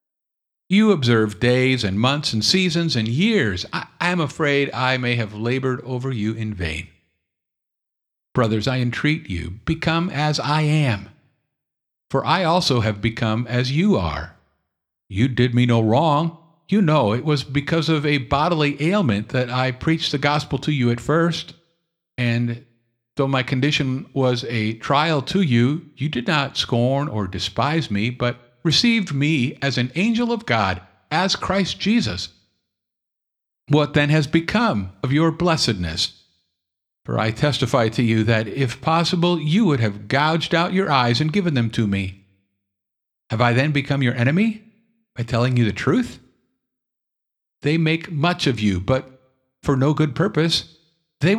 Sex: male